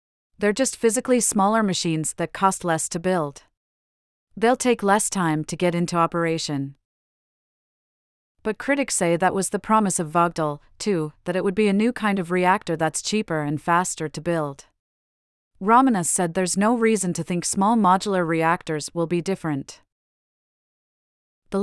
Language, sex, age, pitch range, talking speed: English, female, 40-59, 160-200 Hz, 160 wpm